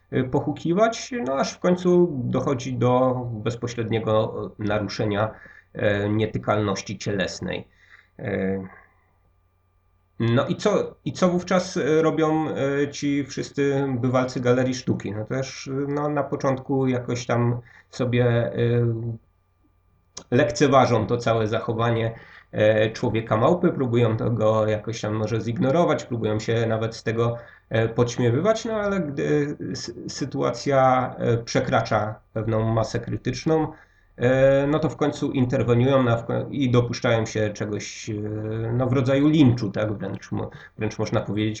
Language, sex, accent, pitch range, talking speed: Polish, male, native, 110-135 Hz, 105 wpm